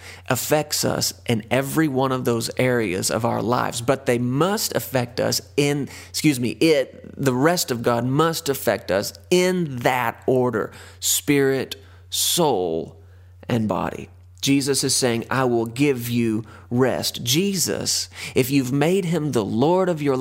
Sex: male